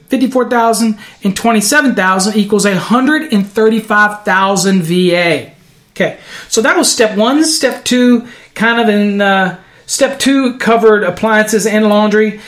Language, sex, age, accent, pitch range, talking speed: English, male, 40-59, American, 180-220 Hz, 115 wpm